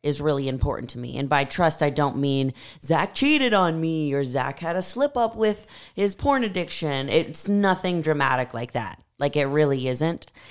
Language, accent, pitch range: English, American, 135-160 Hz